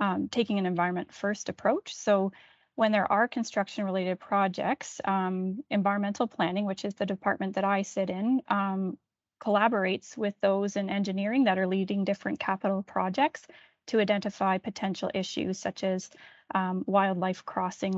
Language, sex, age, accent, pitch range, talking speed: English, female, 30-49, American, 190-210 Hz, 150 wpm